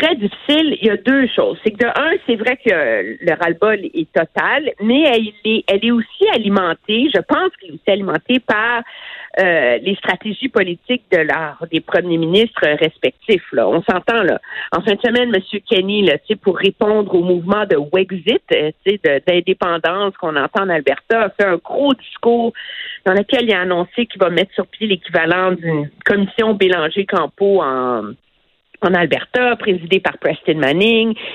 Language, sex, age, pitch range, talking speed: French, female, 50-69, 175-235 Hz, 175 wpm